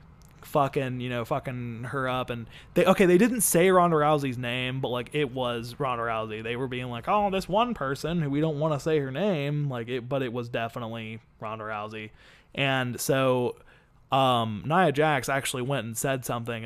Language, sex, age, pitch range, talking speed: English, male, 20-39, 120-150 Hz, 200 wpm